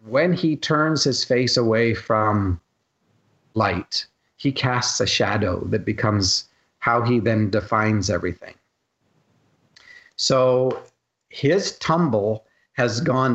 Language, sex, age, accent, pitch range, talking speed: English, male, 50-69, American, 105-125 Hz, 110 wpm